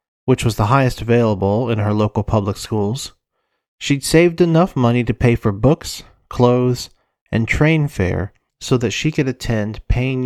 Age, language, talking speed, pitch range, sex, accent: 40-59, English, 165 wpm, 105-140 Hz, male, American